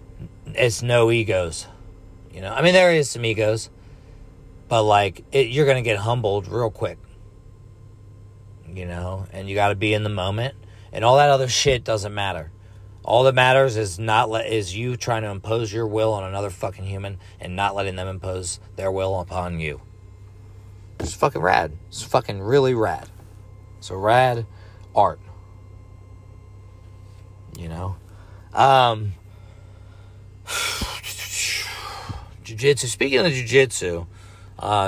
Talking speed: 145 wpm